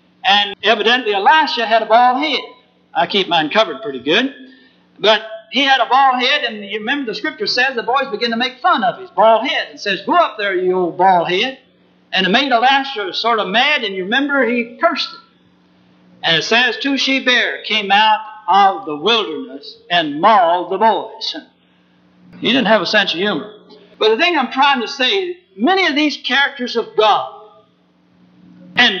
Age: 60-79